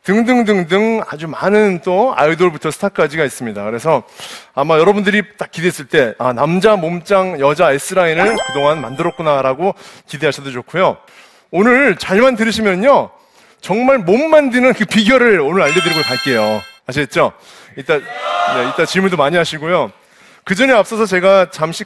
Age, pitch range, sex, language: 30-49, 145-210 Hz, male, Korean